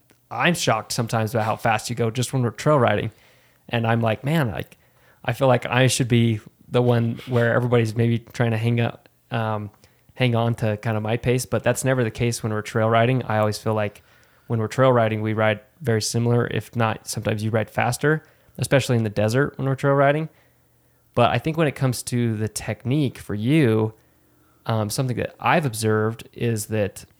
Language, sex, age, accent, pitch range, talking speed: English, male, 20-39, American, 110-125 Hz, 205 wpm